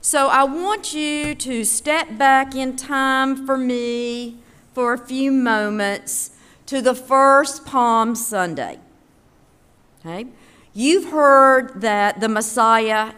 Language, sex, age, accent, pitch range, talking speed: English, female, 50-69, American, 200-265 Hz, 120 wpm